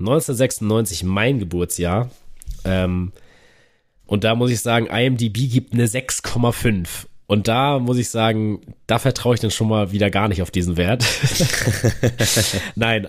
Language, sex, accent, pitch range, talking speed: German, male, German, 95-125 Hz, 140 wpm